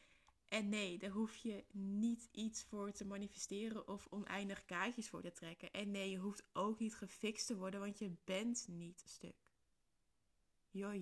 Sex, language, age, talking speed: female, Dutch, 20-39, 170 wpm